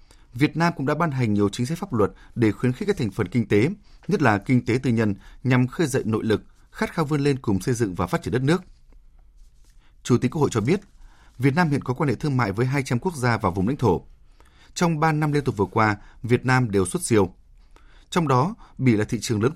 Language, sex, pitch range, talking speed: Vietnamese, male, 100-140 Hz, 255 wpm